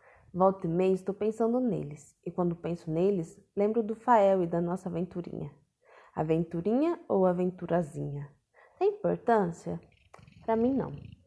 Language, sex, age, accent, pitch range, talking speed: Portuguese, female, 20-39, Brazilian, 170-230 Hz, 135 wpm